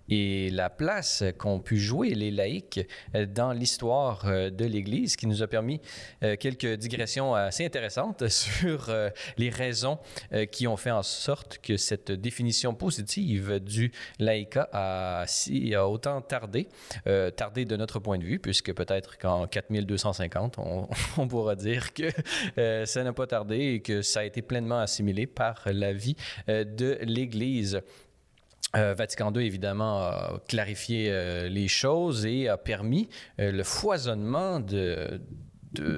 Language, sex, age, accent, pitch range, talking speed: French, male, 30-49, Canadian, 100-120 Hz, 150 wpm